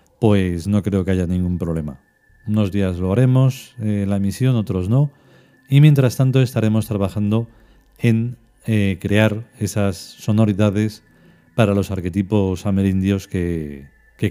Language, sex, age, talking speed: Spanish, male, 40-59, 135 wpm